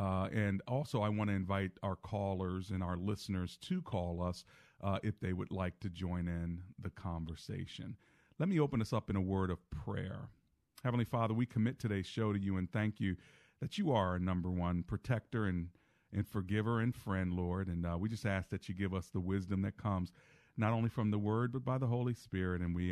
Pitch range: 90-105 Hz